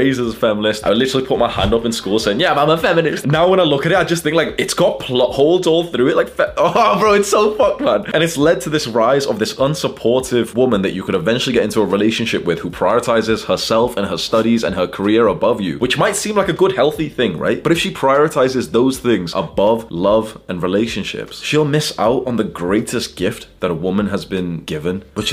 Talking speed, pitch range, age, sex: 250 wpm, 95-140 Hz, 20-39, male